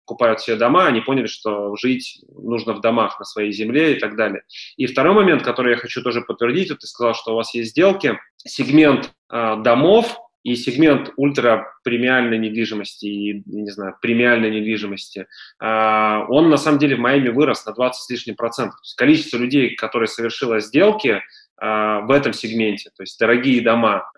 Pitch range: 110-135 Hz